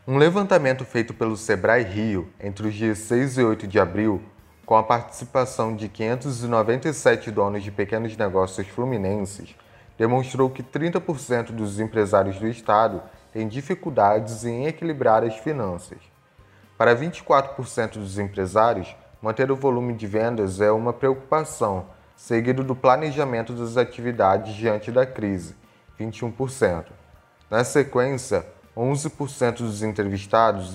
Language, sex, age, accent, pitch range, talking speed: Portuguese, male, 20-39, Brazilian, 105-135 Hz, 125 wpm